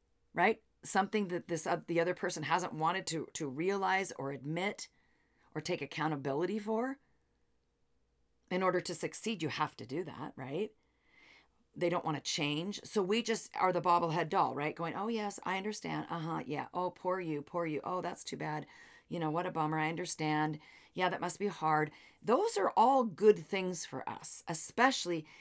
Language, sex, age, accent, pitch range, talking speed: English, female, 40-59, American, 155-205 Hz, 185 wpm